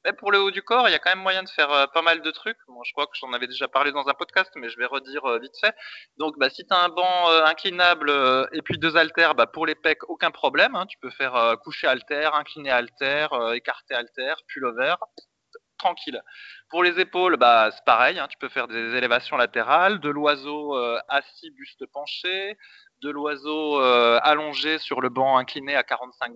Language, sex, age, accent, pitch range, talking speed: French, male, 20-39, French, 135-205 Hz, 230 wpm